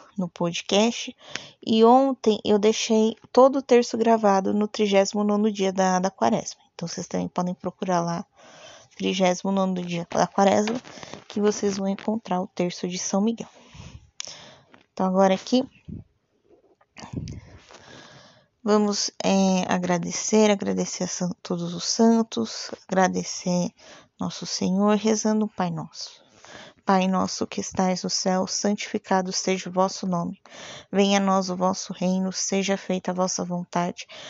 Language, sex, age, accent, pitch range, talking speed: Portuguese, female, 20-39, Brazilian, 185-220 Hz, 135 wpm